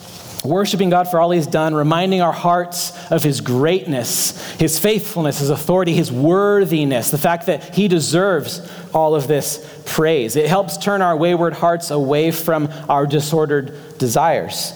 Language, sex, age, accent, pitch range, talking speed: English, male, 30-49, American, 145-185 Hz, 155 wpm